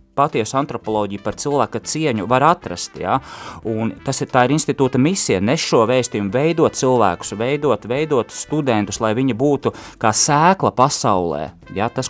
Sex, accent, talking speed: male, Finnish, 160 wpm